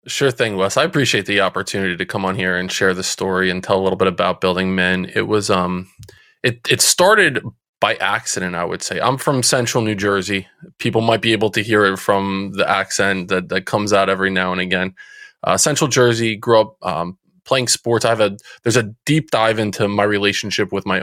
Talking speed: 215 wpm